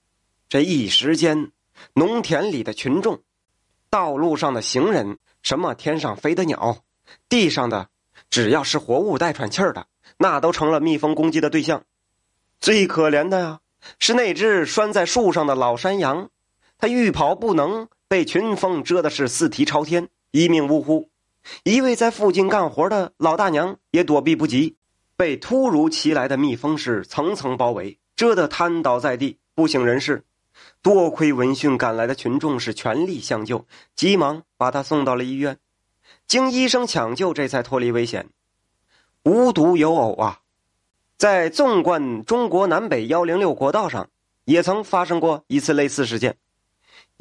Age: 30-49